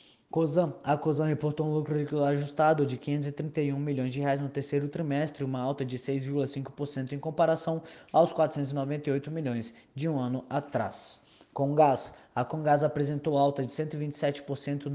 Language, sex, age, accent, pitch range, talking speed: Portuguese, male, 20-39, Brazilian, 135-160 Hz, 140 wpm